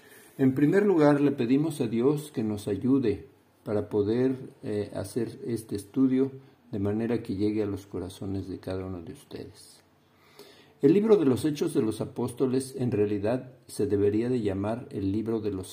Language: Spanish